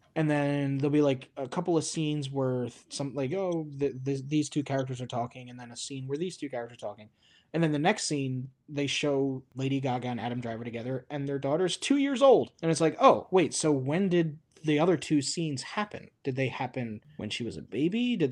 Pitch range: 125-160 Hz